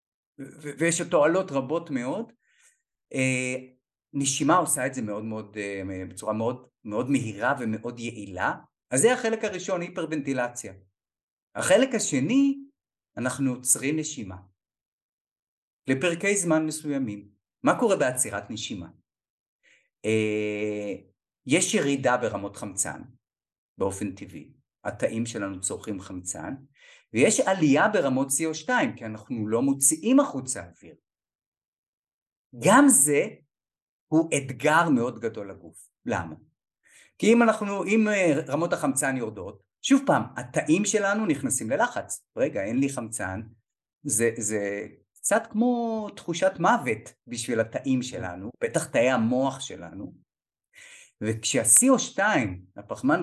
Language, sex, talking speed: Hebrew, male, 110 wpm